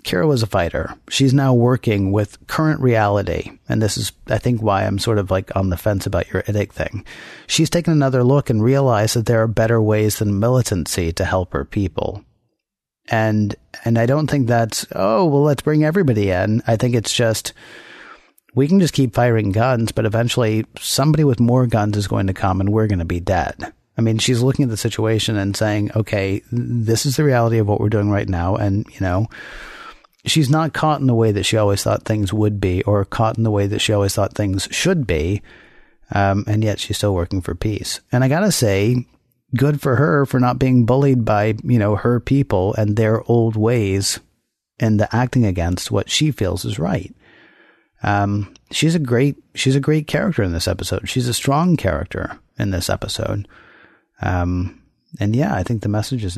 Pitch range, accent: 100-125 Hz, American